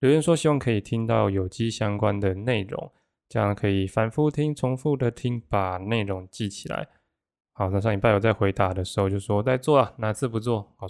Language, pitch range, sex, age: Chinese, 100-125 Hz, male, 20-39